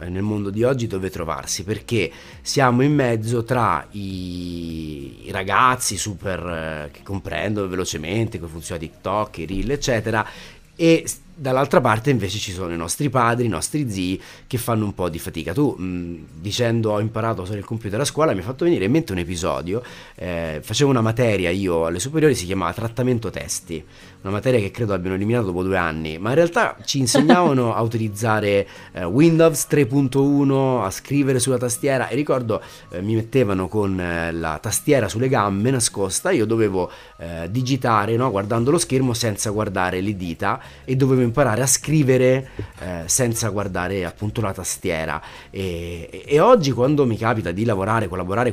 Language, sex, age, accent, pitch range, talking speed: Italian, male, 30-49, native, 95-125 Hz, 170 wpm